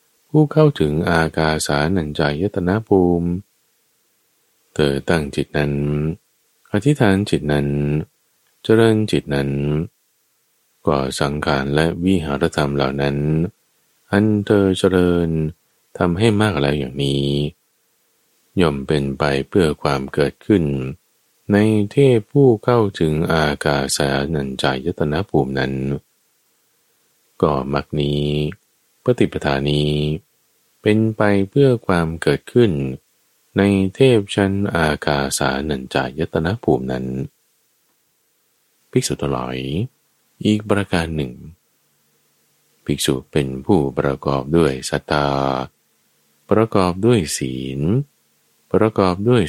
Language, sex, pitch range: Thai, male, 70-95 Hz